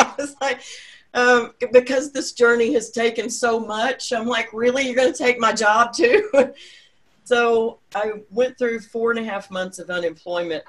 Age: 40-59